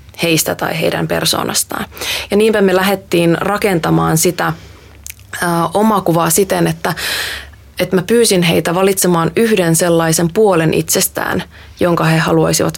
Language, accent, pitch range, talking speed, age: Finnish, native, 165-190 Hz, 115 wpm, 20-39